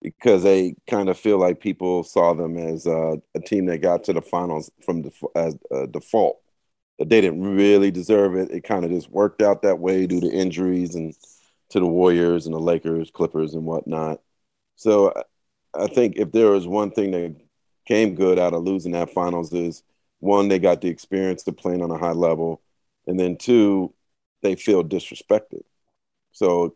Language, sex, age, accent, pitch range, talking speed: English, male, 40-59, American, 80-95 Hz, 195 wpm